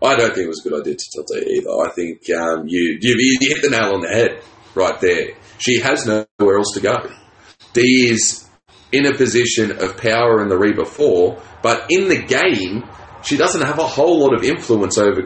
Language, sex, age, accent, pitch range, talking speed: English, male, 30-49, Australian, 105-130 Hz, 215 wpm